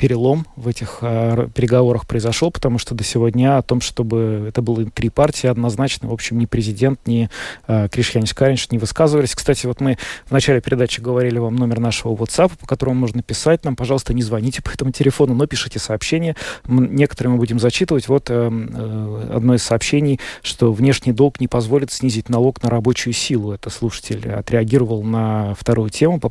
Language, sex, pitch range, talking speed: Russian, male, 115-130 Hz, 180 wpm